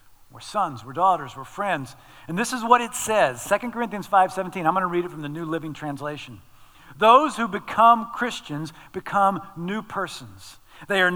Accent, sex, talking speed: American, male, 190 wpm